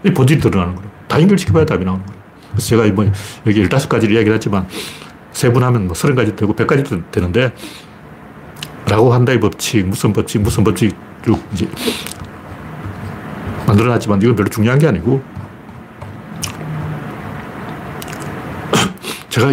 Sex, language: male, Korean